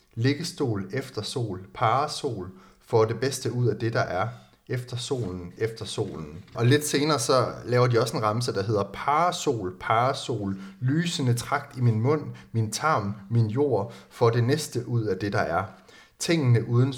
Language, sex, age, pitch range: Danish, male, 30-49, 105-130 Hz